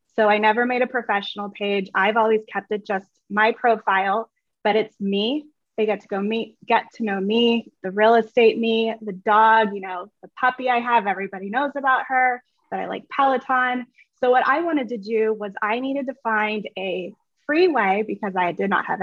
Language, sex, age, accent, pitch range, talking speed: English, female, 20-39, American, 200-250 Hz, 205 wpm